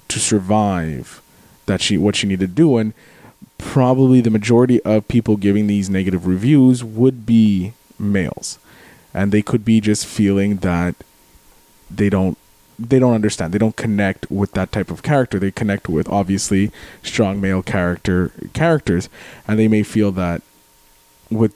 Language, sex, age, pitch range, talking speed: English, male, 20-39, 95-115 Hz, 155 wpm